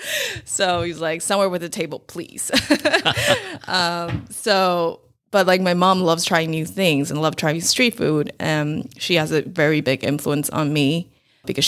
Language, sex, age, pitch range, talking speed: English, female, 20-39, 150-180 Hz, 170 wpm